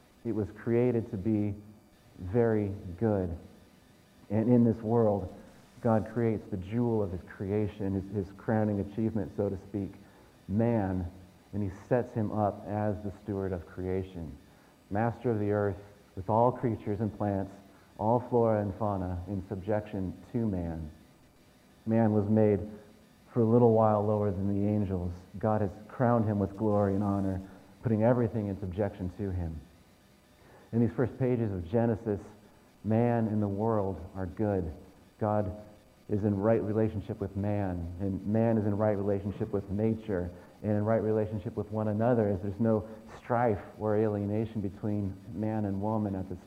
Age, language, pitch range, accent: 40-59, English, 100-115 Hz, American